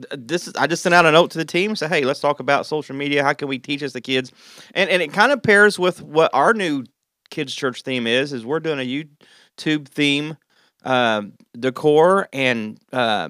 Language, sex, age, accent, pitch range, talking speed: English, male, 30-49, American, 115-150 Hz, 220 wpm